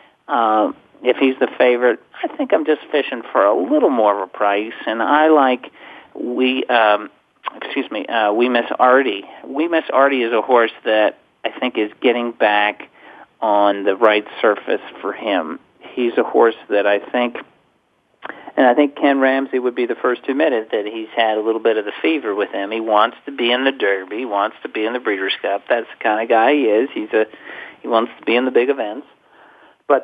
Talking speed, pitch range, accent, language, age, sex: 215 wpm, 110-135 Hz, American, English, 50-69, male